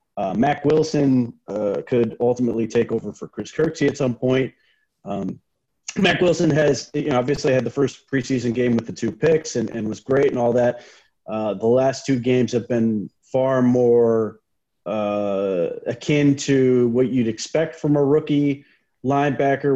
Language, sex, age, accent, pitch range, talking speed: English, male, 30-49, American, 115-135 Hz, 170 wpm